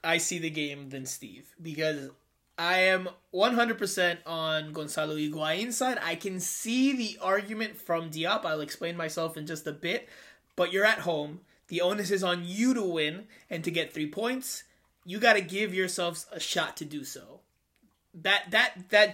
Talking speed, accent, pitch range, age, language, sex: 180 wpm, American, 155-200 Hz, 20-39, English, male